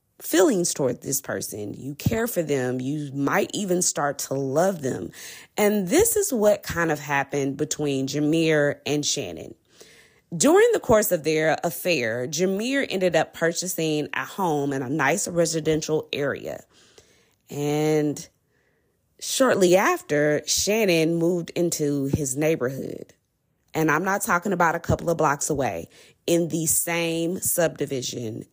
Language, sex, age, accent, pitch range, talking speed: English, female, 20-39, American, 145-185 Hz, 135 wpm